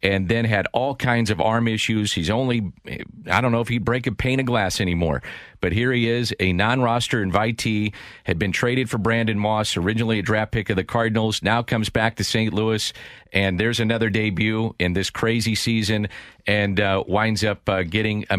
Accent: American